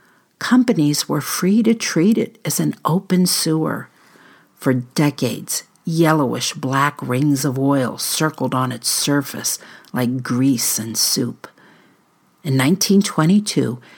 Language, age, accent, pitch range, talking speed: English, 60-79, American, 135-200 Hz, 110 wpm